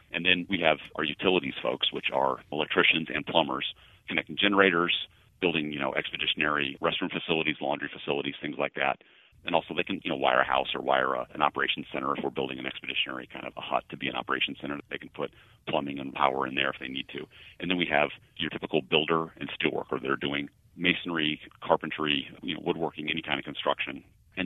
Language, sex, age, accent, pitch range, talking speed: English, male, 40-59, American, 70-85 Hz, 220 wpm